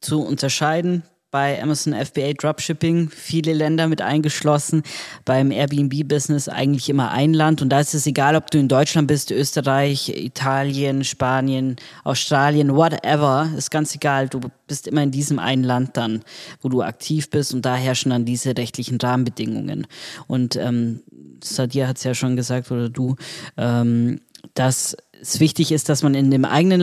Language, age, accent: German, 20-39, German